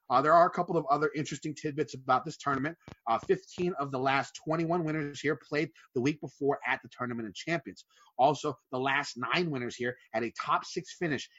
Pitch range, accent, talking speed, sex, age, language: 130-165 Hz, American, 210 wpm, male, 30-49, English